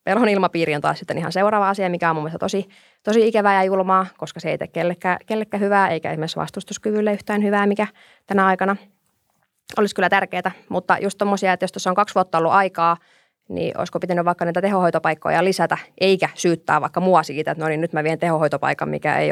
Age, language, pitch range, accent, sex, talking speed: 20-39, Finnish, 170-200 Hz, native, female, 210 wpm